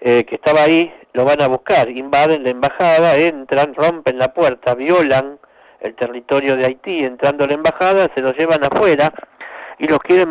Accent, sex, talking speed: Argentinian, male, 185 wpm